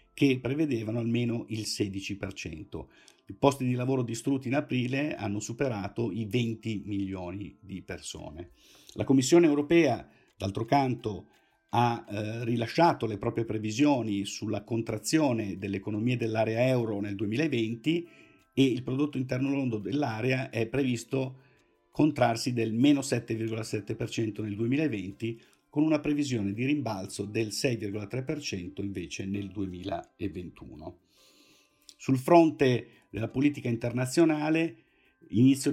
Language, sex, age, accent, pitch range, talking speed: Italian, male, 50-69, native, 110-135 Hz, 115 wpm